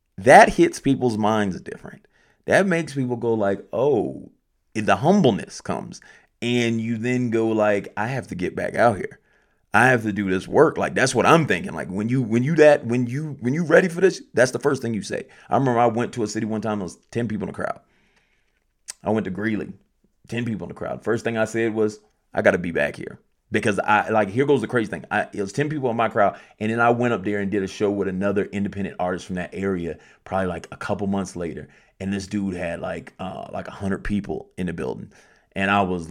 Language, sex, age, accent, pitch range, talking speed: English, male, 30-49, American, 100-130 Hz, 240 wpm